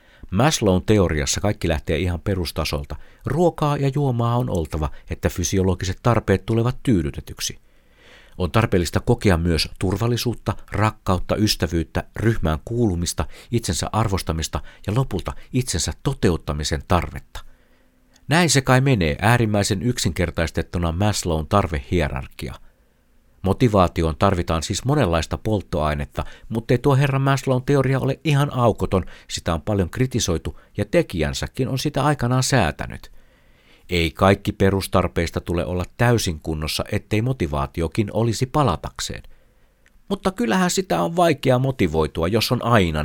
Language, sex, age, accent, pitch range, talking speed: Finnish, male, 60-79, native, 85-120 Hz, 115 wpm